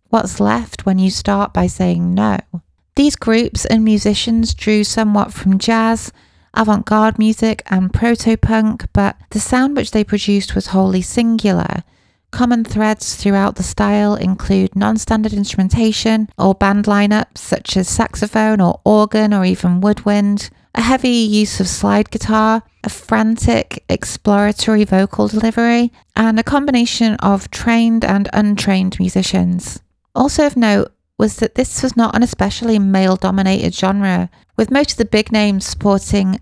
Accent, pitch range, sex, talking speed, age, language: British, 195-225 Hz, female, 145 wpm, 30-49, English